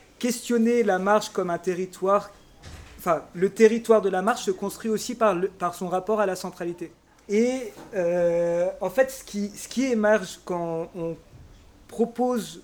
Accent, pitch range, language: French, 170-225 Hz, French